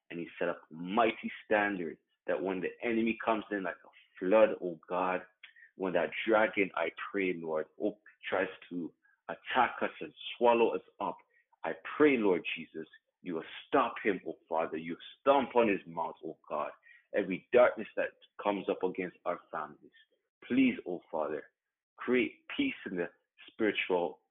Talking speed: 165 wpm